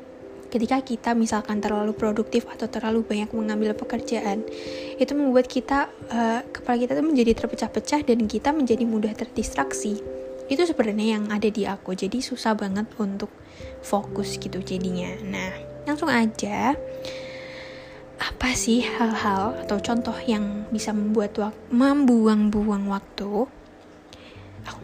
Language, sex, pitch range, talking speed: Indonesian, female, 205-245 Hz, 125 wpm